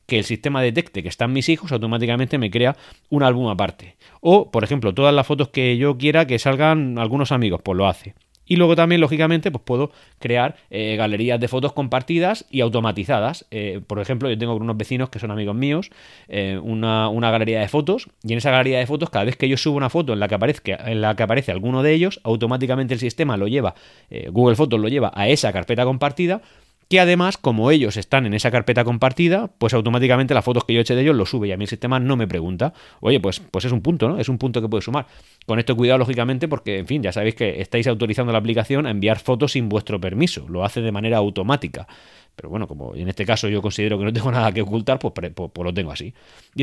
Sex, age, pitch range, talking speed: male, 30-49, 105-135 Hz, 240 wpm